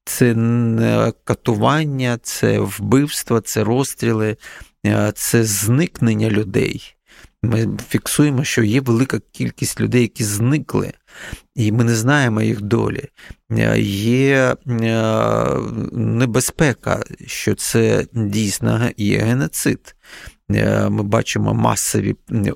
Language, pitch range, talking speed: Ukrainian, 105-125 Hz, 90 wpm